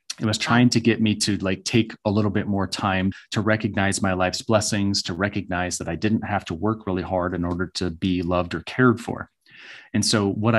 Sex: male